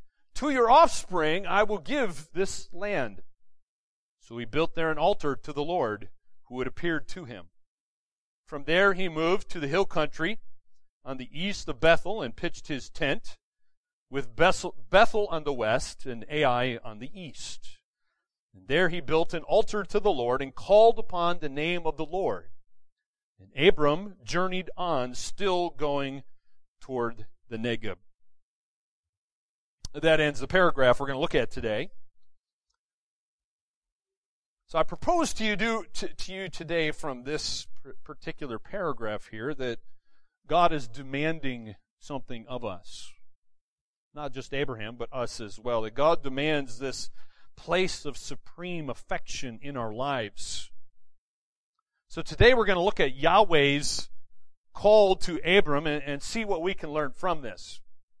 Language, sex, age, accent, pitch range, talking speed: English, male, 40-59, American, 125-180 Hz, 150 wpm